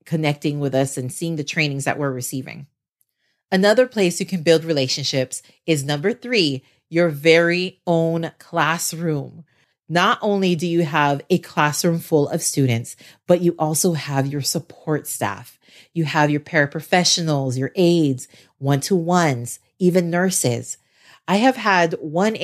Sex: female